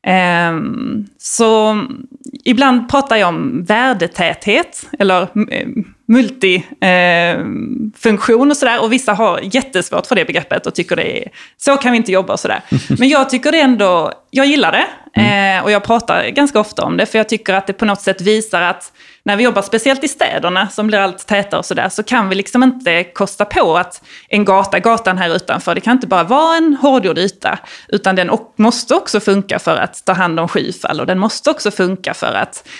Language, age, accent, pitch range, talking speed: Swedish, 20-39, native, 185-250 Hz, 190 wpm